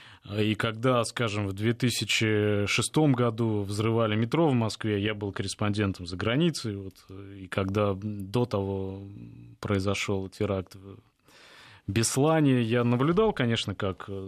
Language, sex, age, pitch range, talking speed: Russian, male, 20-39, 100-125 Hz, 115 wpm